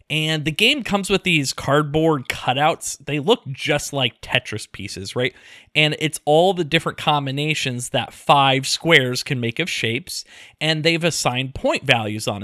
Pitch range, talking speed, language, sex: 130-175 Hz, 165 wpm, English, male